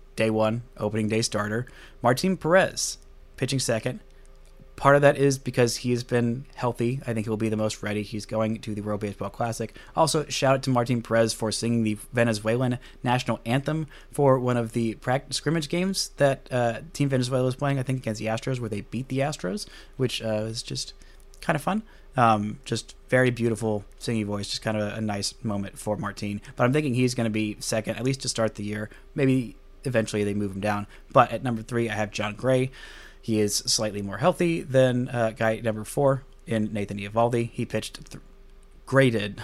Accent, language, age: American, English, 30-49